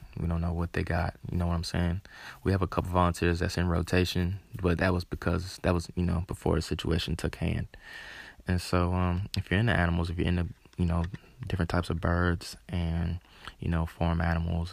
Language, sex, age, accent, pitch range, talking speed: English, male, 20-39, American, 85-90 Hz, 220 wpm